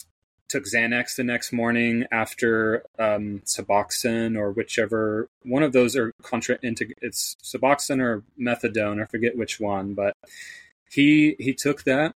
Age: 30-49